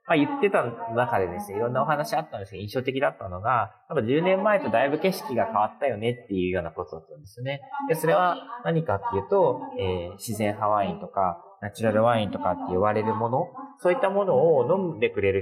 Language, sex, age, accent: Japanese, male, 30-49, native